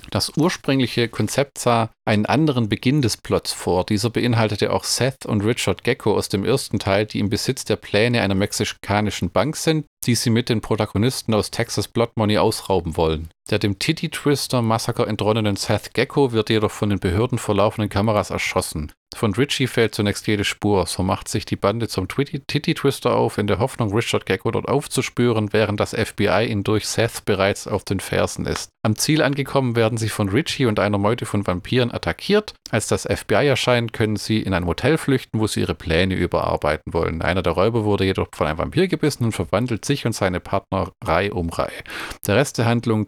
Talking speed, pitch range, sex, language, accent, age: 195 wpm, 100-125 Hz, male, German, German, 40-59